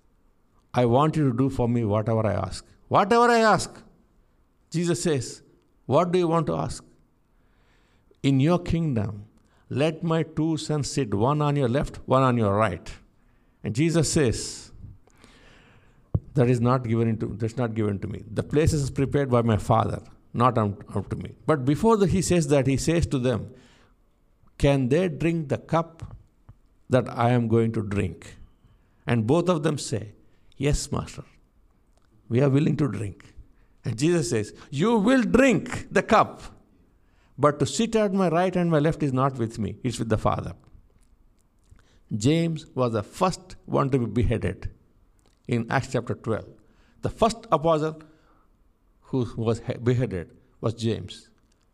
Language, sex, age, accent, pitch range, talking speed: English, male, 50-69, Indian, 110-155 Hz, 160 wpm